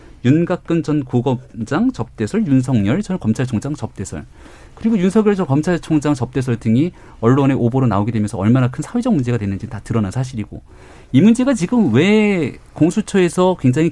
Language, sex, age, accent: Korean, male, 40-59, native